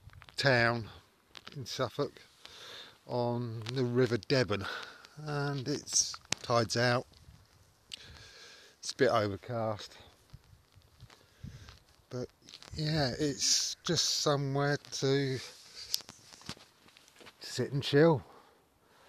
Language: English